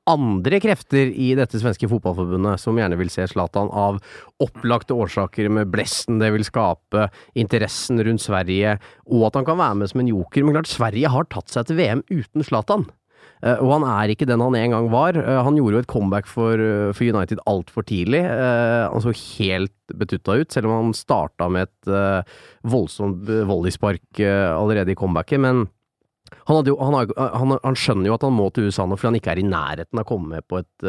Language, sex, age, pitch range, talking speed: English, male, 30-49, 100-130 Hz, 195 wpm